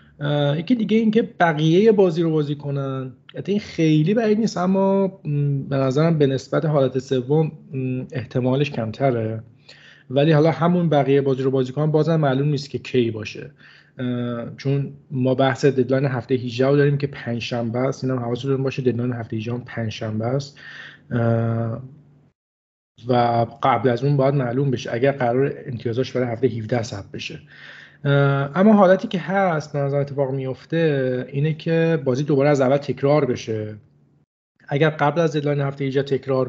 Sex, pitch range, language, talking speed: male, 125-150 Hz, Persian, 150 wpm